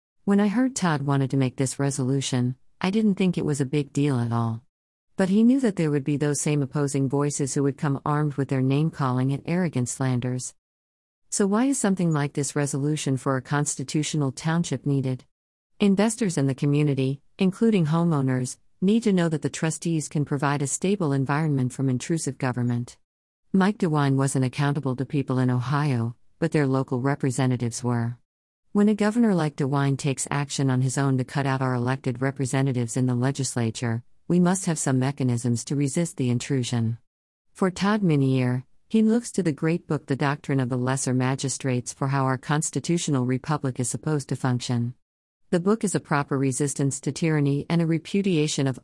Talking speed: 185 wpm